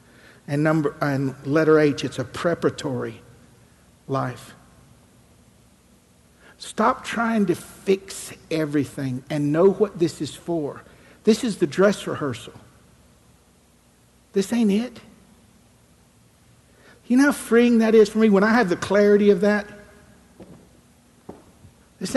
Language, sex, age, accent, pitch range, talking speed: English, male, 60-79, American, 145-195 Hz, 120 wpm